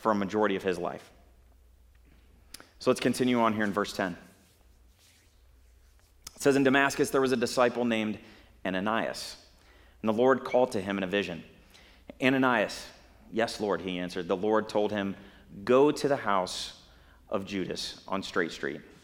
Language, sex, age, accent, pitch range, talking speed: English, male, 30-49, American, 90-120 Hz, 160 wpm